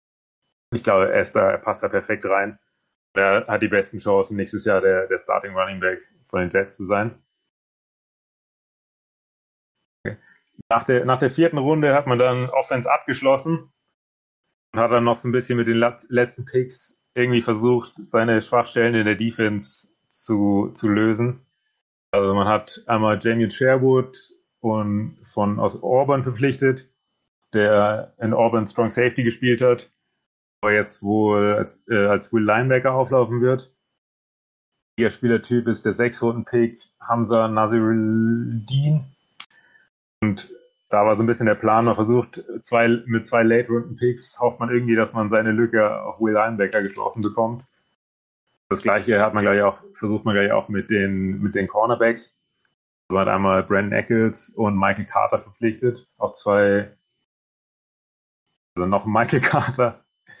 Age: 30-49